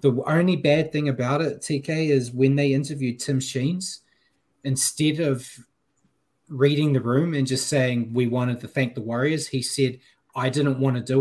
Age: 20-39